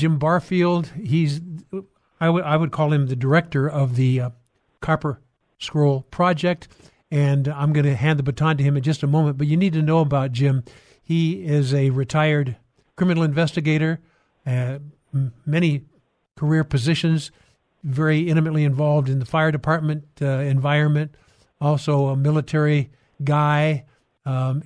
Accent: American